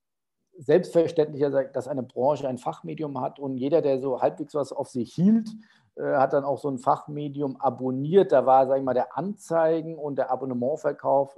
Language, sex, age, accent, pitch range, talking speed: German, male, 50-69, German, 130-155 Hz, 185 wpm